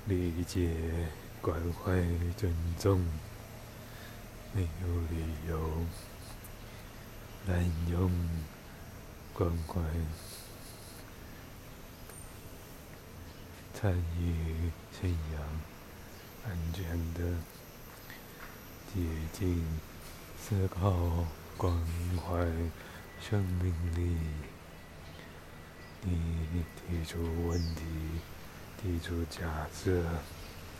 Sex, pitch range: male, 80-95 Hz